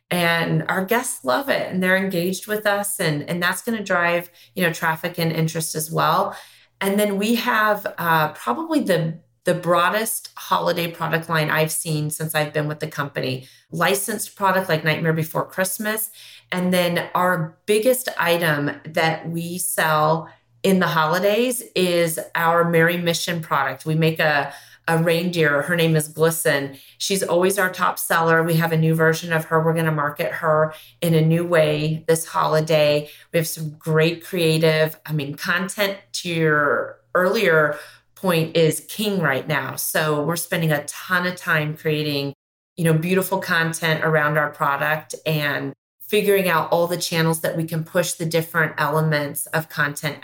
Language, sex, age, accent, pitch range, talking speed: English, female, 30-49, American, 155-180 Hz, 170 wpm